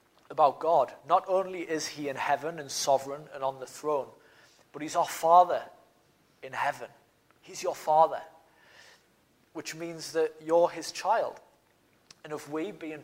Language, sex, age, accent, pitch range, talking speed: English, male, 30-49, British, 130-155 Hz, 150 wpm